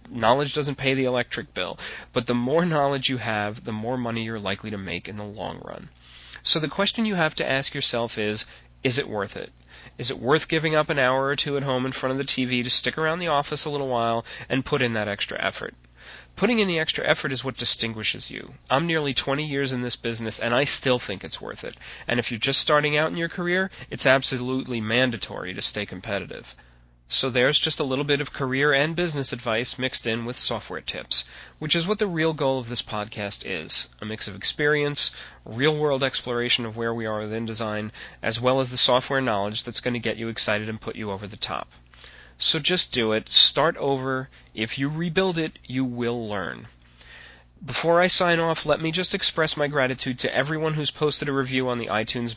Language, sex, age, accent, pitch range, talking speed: English, male, 30-49, American, 110-145 Hz, 220 wpm